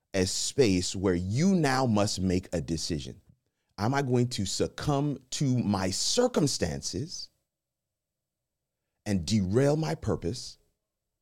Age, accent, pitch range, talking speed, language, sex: 40-59, American, 85-125 Hz, 110 wpm, English, male